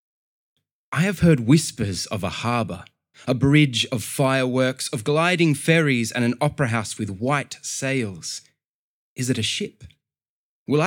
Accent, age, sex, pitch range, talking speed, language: Australian, 20-39, male, 105-135 Hz, 145 wpm, English